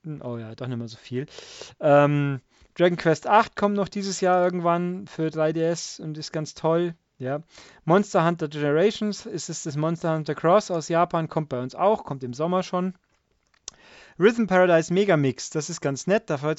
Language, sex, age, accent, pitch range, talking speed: German, male, 30-49, German, 140-180 Hz, 185 wpm